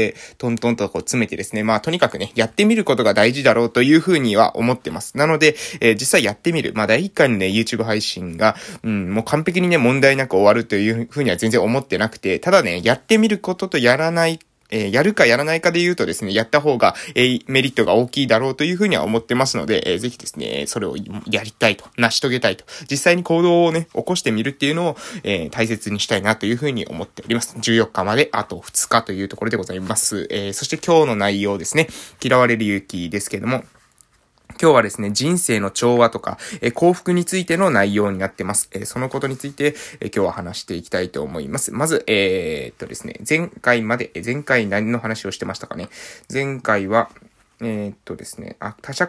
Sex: male